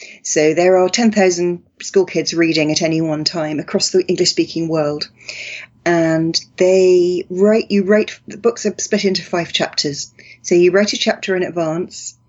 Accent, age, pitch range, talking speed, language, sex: British, 30-49, 160-195 Hz, 170 wpm, English, female